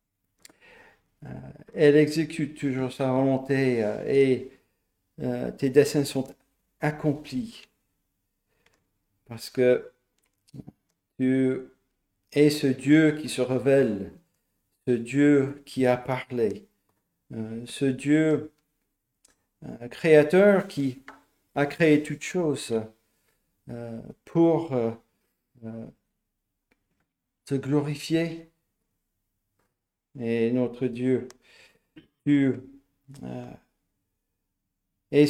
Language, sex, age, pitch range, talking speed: French, male, 50-69, 110-145 Hz, 70 wpm